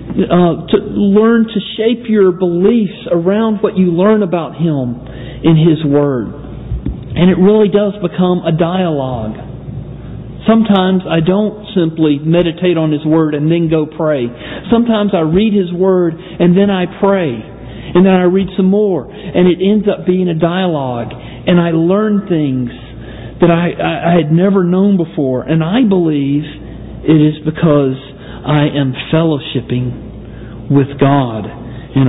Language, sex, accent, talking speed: English, male, American, 150 wpm